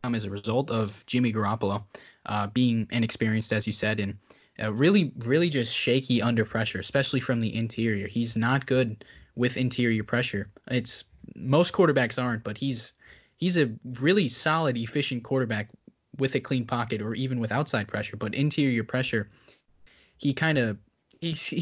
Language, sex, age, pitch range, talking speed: English, male, 20-39, 110-130 Hz, 160 wpm